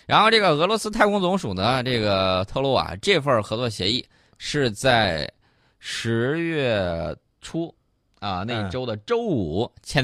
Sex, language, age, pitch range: male, Chinese, 20-39, 95-140 Hz